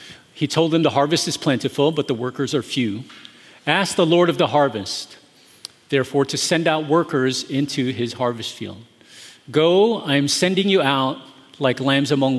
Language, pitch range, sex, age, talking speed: English, 130-160 Hz, male, 40-59, 175 wpm